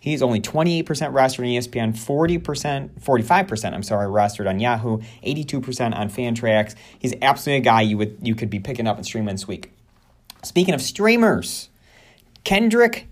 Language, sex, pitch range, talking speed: English, male, 110-150 Hz, 160 wpm